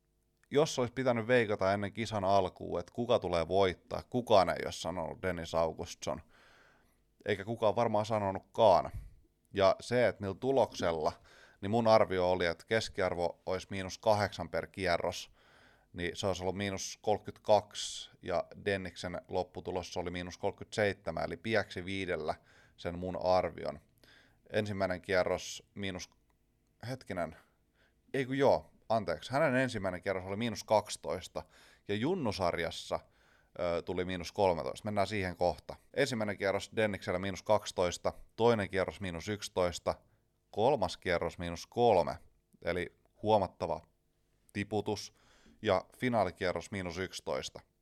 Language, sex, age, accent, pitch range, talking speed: Finnish, male, 30-49, native, 90-105 Hz, 120 wpm